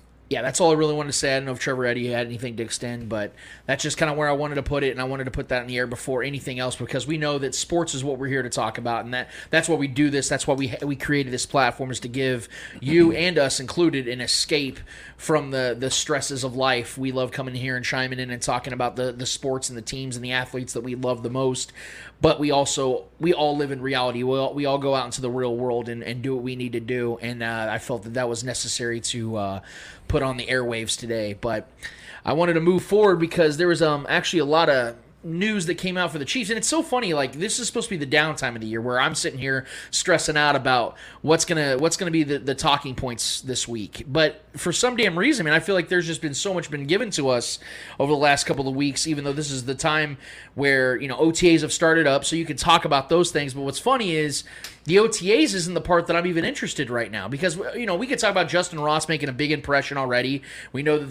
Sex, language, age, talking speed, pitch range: male, English, 20-39, 275 wpm, 125-160 Hz